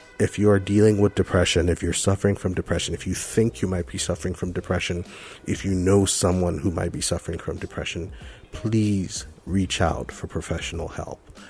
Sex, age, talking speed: male, 40-59, 190 wpm